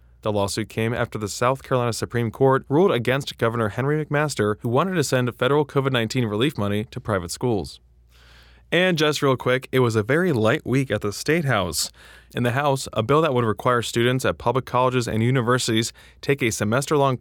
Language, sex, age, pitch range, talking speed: English, male, 20-39, 110-135 Hz, 195 wpm